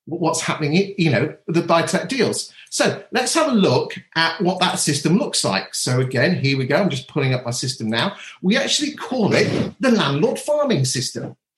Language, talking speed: English, 195 wpm